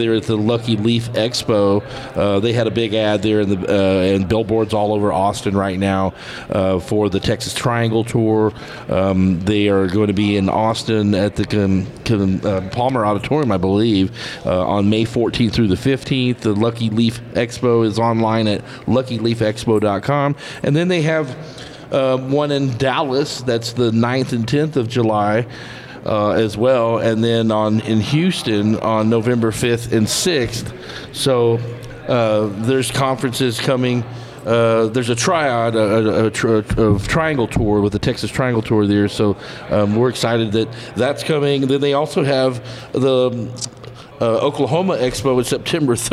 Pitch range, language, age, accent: 105-130 Hz, English, 40-59, American